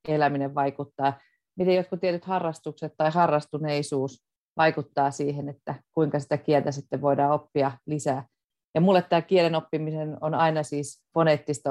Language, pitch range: Finnish, 145-170 Hz